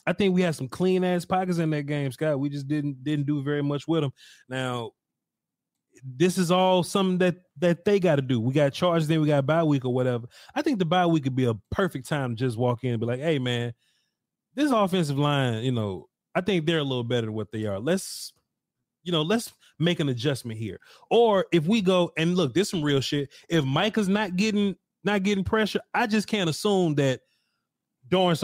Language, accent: English, American